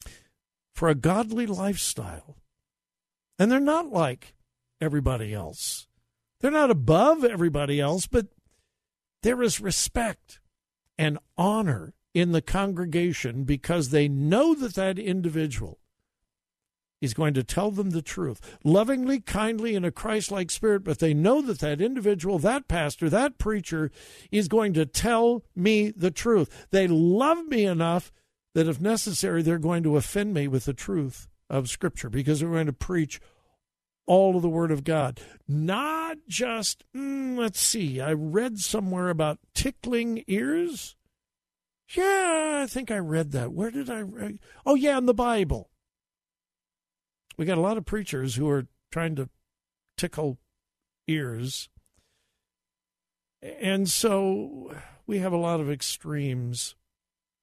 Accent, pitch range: American, 150-215 Hz